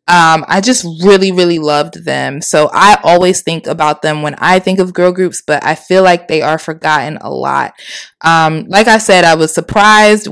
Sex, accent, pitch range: female, American, 170-215 Hz